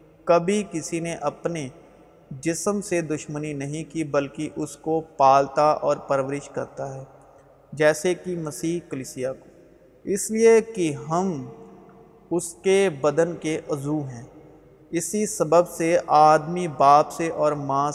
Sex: male